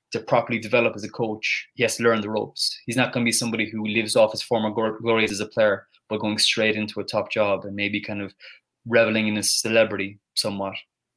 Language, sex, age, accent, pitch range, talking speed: English, male, 20-39, Irish, 105-115 Hz, 230 wpm